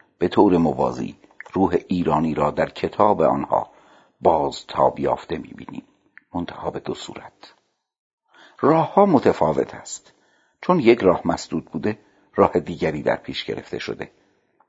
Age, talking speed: 50-69, 125 wpm